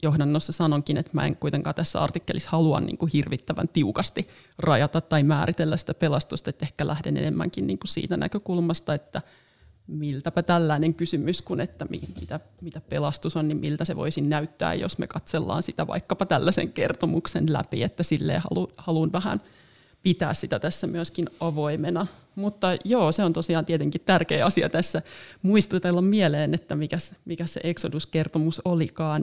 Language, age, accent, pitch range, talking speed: Finnish, 30-49, native, 150-170 Hz, 145 wpm